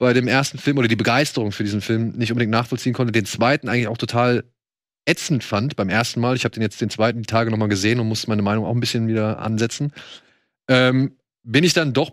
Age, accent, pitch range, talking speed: 30-49, German, 115-140 Hz, 235 wpm